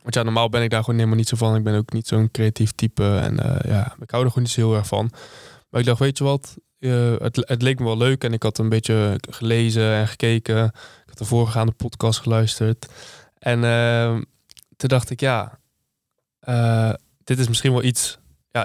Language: Dutch